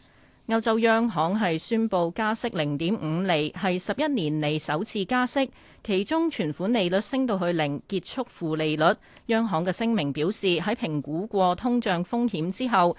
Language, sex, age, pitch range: Chinese, female, 30-49, 165-230 Hz